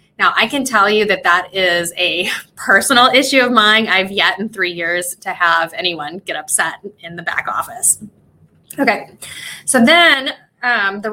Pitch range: 190-230 Hz